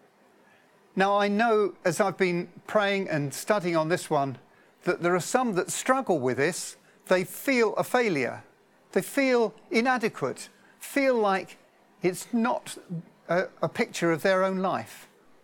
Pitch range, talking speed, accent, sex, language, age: 160-210 Hz, 150 wpm, British, male, English, 50-69